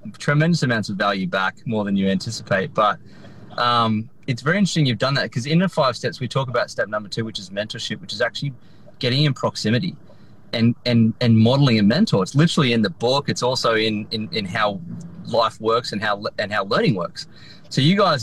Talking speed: 215 wpm